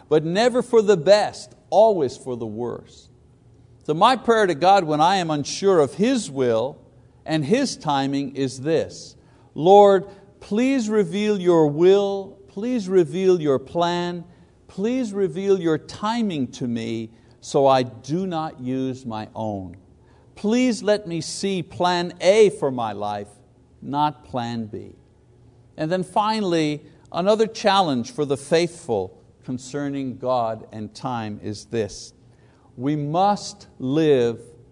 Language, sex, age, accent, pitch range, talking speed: English, male, 60-79, American, 130-200 Hz, 135 wpm